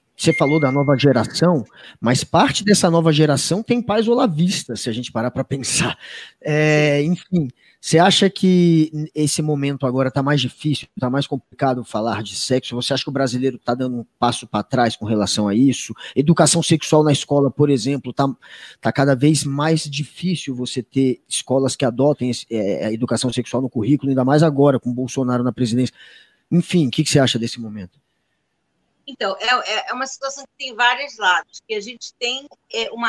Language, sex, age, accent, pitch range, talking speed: Portuguese, male, 20-39, Brazilian, 130-210 Hz, 180 wpm